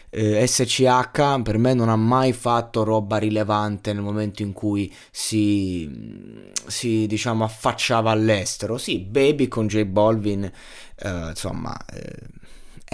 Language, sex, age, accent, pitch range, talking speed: Italian, male, 20-39, native, 100-115 Hz, 125 wpm